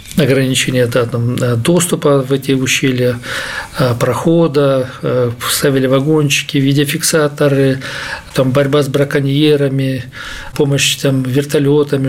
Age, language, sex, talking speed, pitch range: 40-59, Russian, male, 90 wpm, 125-145 Hz